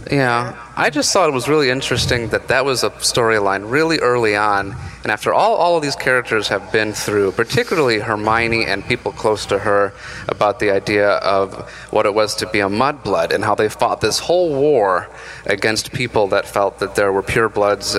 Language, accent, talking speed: English, American, 195 wpm